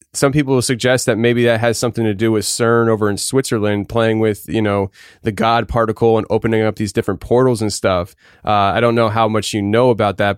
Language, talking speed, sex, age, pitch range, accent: English, 235 wpm, male, 20-39, 110-125 Hz, American